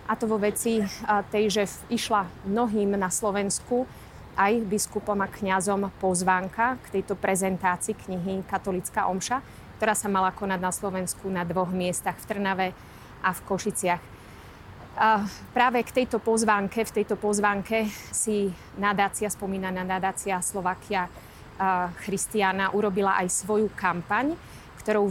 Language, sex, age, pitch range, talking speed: Slovak, female, 30-49, 185-210 Hz, 130 wpm